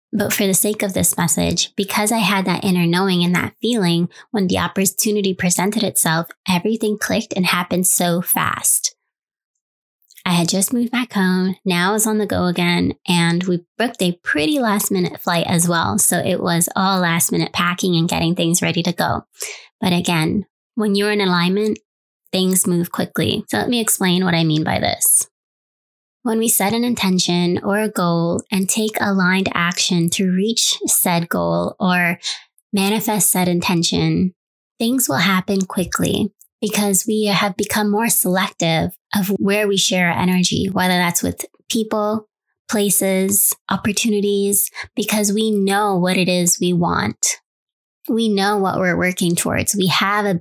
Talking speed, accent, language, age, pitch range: 165 wpm, American, English, 20-39, 175-210 Hz